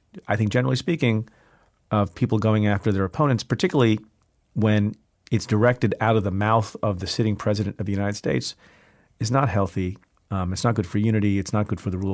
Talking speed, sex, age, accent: 205 wpm, male, 40-59, American